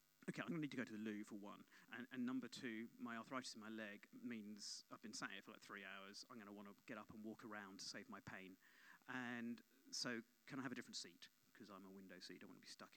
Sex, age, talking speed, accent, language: male, 40-59, 285 wpm, British, English